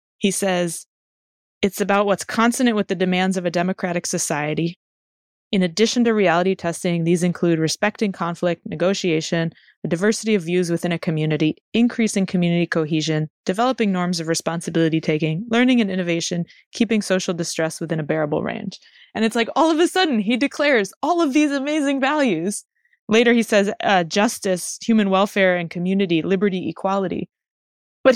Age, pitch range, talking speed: 20-39, 170-210 Hz, 160 wpm